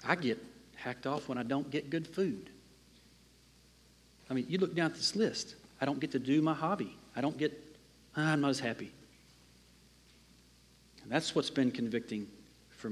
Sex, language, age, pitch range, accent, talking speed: male, English, 40-59, 105-145 Hz, American, 180 wpm